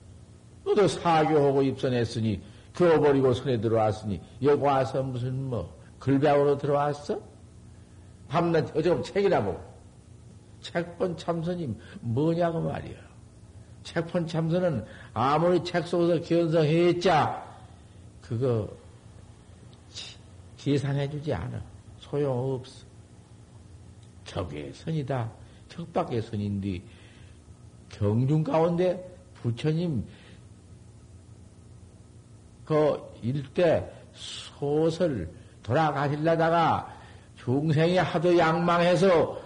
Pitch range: 105-165 Hz